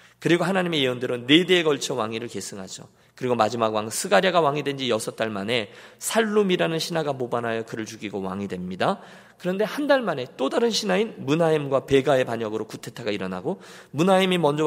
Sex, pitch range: male, 120-185 Hz